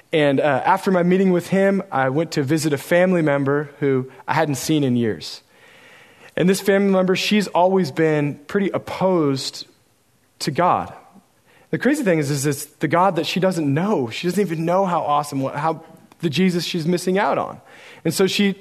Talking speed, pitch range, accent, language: 195 wpm, 135-190 Hz, American, English